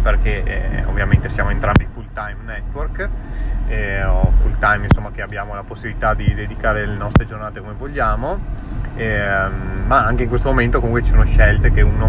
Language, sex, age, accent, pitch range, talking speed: Italian, male, 20-39, native, 110-125 Hz, 180 wpm